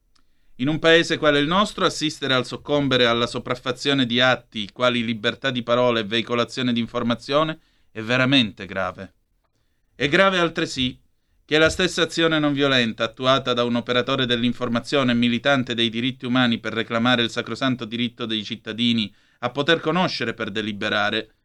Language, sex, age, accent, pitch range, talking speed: Italian, male, 30-49, native, 115-145 Hz, 150 wpm